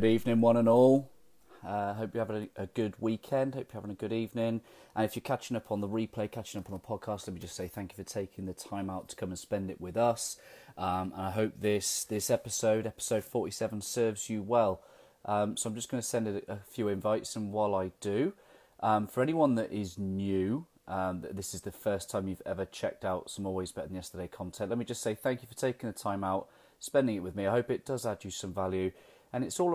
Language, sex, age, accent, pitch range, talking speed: English, male, 30-49, British, 95-115 Hz, 250 wpm